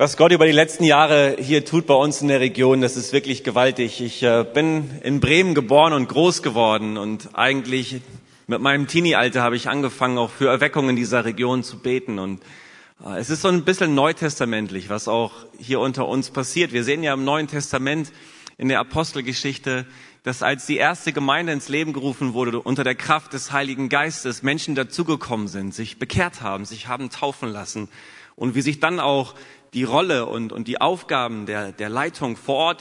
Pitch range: 120-155 Hz